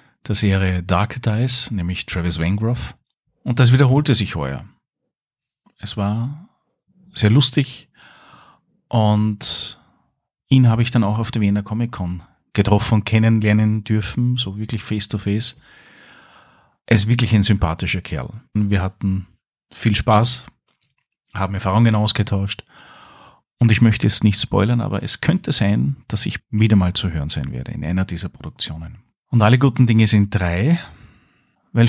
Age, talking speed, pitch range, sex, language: 40-59, 140 wpm, 100-120 Hz, male, German